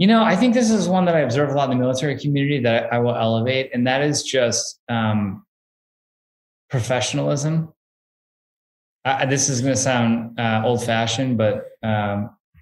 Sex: male